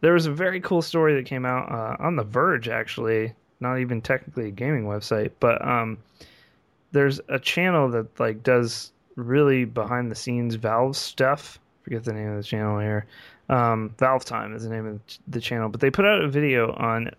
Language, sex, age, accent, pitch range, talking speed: English, male, 20-39, American, 110-140 Hz, 200 wpm